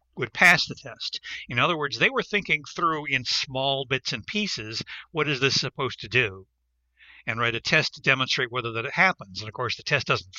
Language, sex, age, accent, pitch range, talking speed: English, male, 60-79, American, 110-145 Hz, 215 wpm